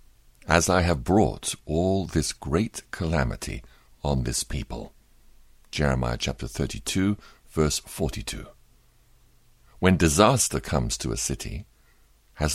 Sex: male